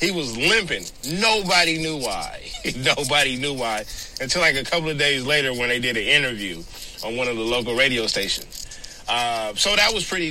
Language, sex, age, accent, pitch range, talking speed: English, male, 30-49, American, 125-170 Hz, 190 wpm